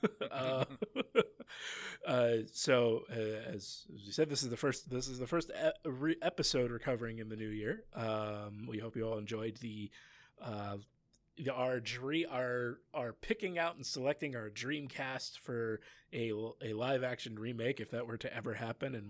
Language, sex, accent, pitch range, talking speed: English, male, American, 110-140 Hz, 170 wpm